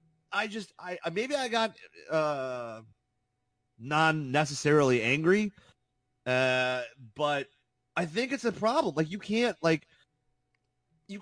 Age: 30-49